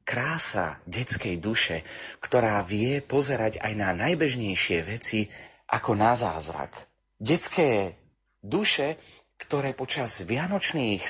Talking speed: 95 wpm